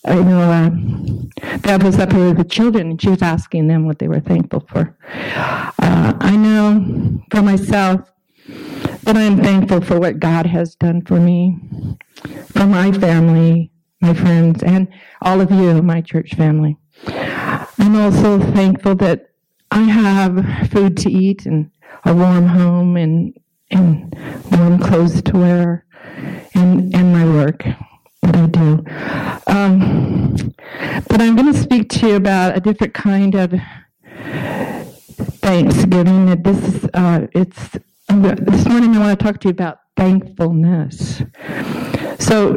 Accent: American